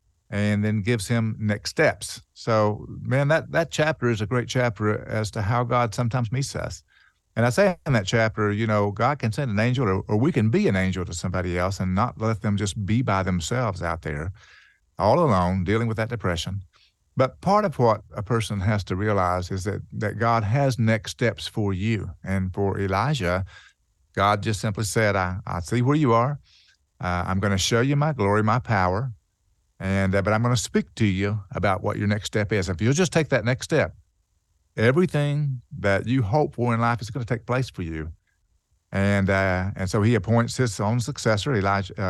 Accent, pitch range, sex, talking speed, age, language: American, 95-125 Hz, male, 210 wpm, 50-69, English